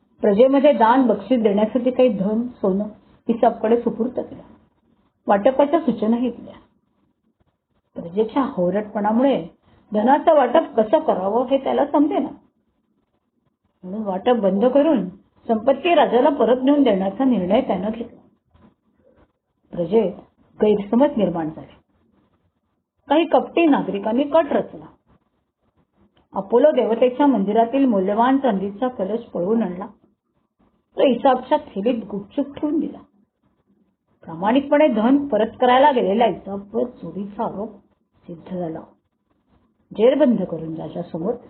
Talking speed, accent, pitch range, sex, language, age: 100 wpm, native, 200-265 Hz, female, Marathi, 40-59